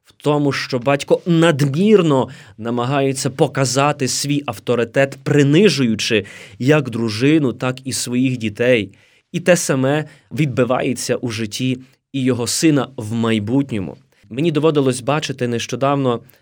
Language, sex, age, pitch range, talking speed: Ukrainian, male, 20-39, 110-140 Hz, 115 wpm